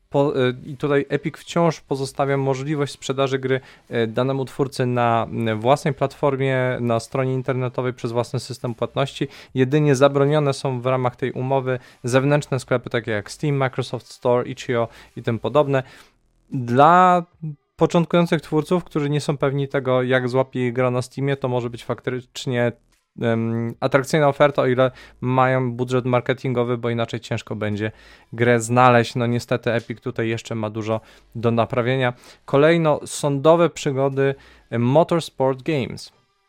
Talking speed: 135 wpm